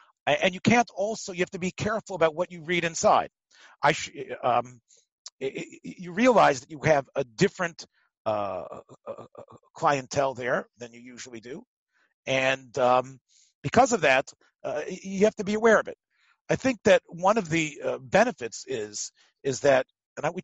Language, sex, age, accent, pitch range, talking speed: English, male, 40-59, American, 130-185 Hz, 180 wpm